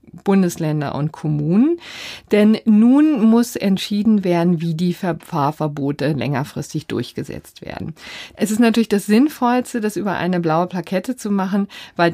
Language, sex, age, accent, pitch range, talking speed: German, female, 50-69, German, 160-205 Hz, 135 wpm